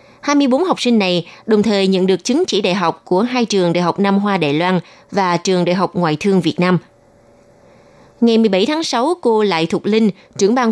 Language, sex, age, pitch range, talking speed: Vietnamese, female, 20-39, 180-235 Hz, 220 wpm